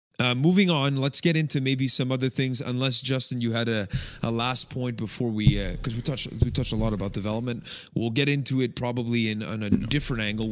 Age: 30-49